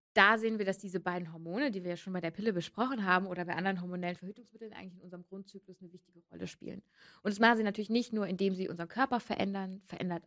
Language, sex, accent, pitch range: German, female, German, 170-205 Hz